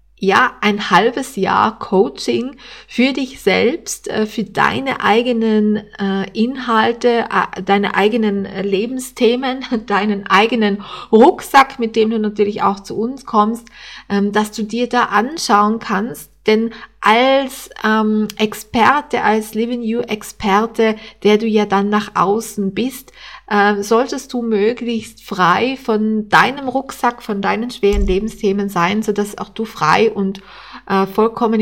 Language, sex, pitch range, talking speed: German, female, 200-230 Hz, 125 wpm